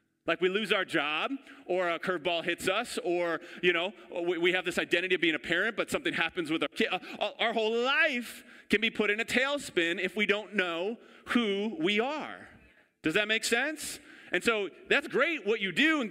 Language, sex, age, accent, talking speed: English, male, 30-49, American, 205 wpm